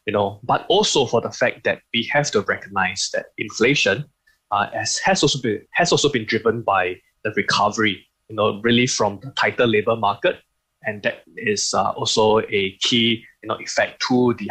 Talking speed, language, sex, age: 190 wpm, English, male, 10-29